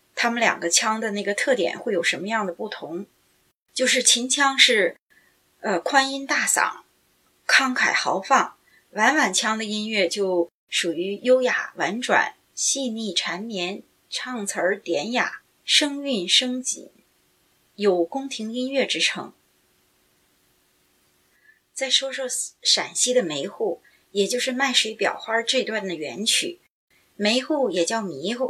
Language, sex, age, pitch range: Chinese, female, 30-49, 185-255 Hz